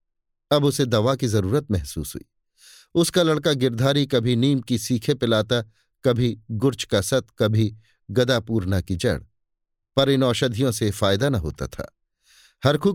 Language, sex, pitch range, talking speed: Hindi, male, 105-140 Hz, 150 wpm